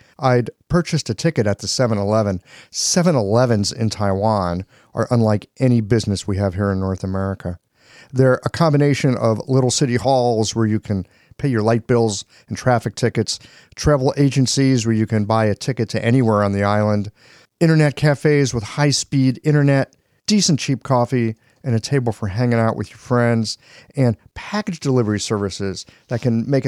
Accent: American